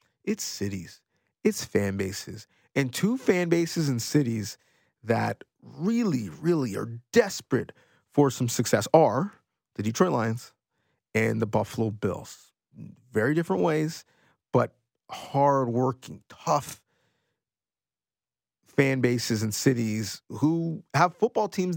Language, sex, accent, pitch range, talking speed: English, male, American, 120-180 Hz, 115 wpm